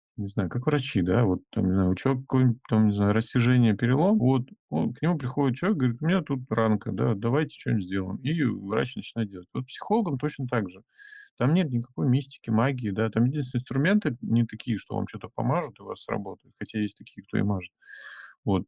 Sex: male